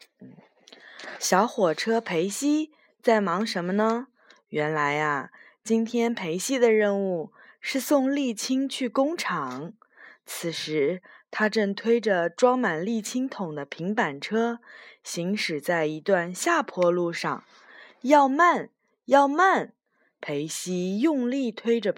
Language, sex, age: Chinese, female, 20-39